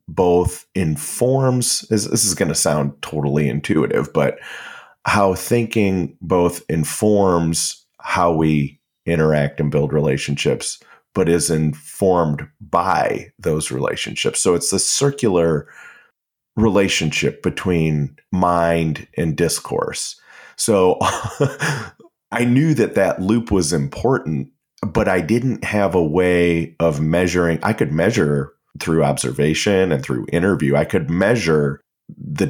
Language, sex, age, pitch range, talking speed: English, male, 30-49, 75-95 Hz, 115 wpm